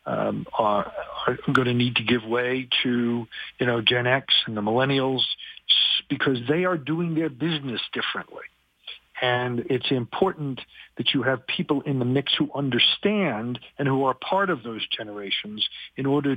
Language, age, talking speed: English, 50-69, 165 wpm